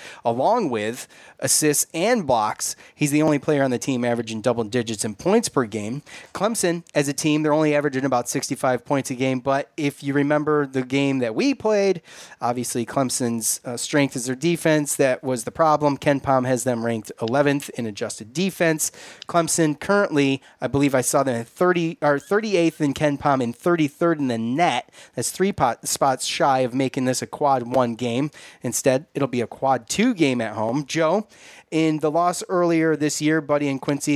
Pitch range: 125-155 Hz